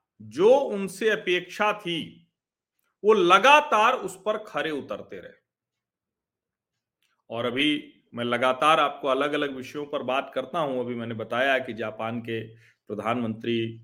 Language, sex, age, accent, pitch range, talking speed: Hindi, male, 40-59, native, 125-185 Hz, 130 wpm